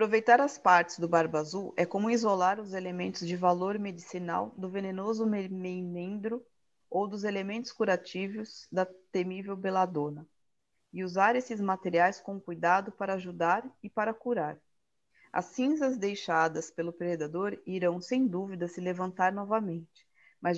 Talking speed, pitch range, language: 135 wpm, 180-215 Hz, Portuguese